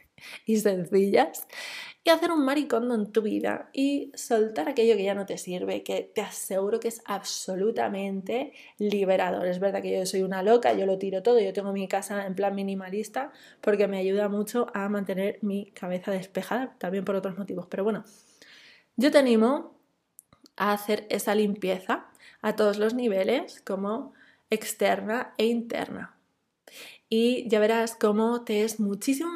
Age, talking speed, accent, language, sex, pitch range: 20-39, 160 wpm, Spanish, Spanish, female, 200-235 Hz